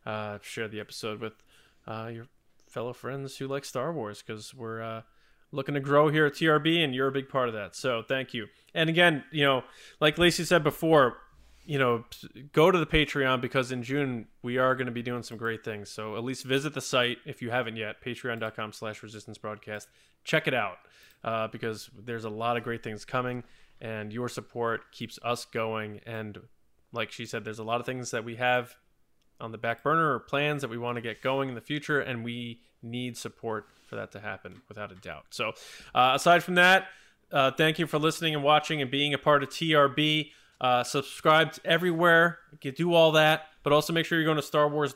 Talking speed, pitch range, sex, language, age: 215 wpm, 115-145 Hz, male, English, 20-39